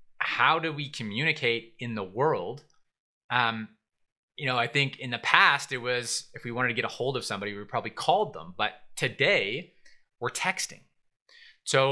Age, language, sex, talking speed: 20-39, English, male, 175 wpm